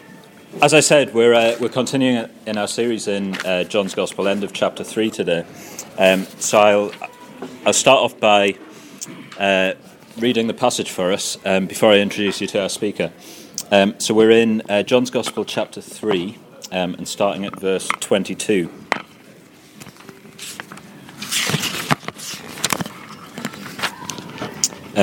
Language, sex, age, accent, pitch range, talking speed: English, male, 30-49, British, 95-120 Hz, 130 wpm